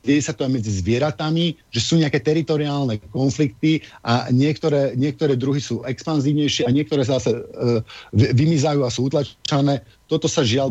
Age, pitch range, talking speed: 50-69, 125-165 Hz, 165 wpm